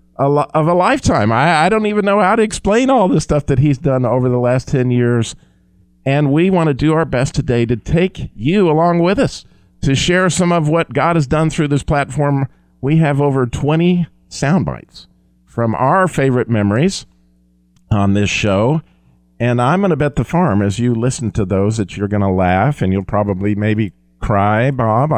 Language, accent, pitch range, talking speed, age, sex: English, American, 100-145 Hz, 200 wpm, 50-69, male